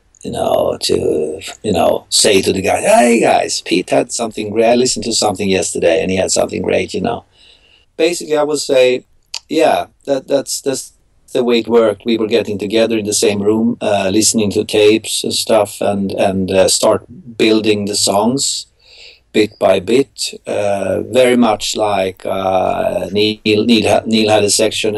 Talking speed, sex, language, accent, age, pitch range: 175 wpm, male, English, Swedish, 60-79, 95-115 Hz